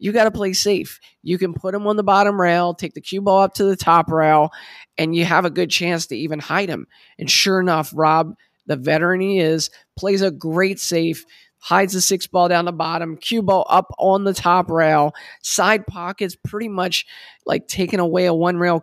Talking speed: 215 wpm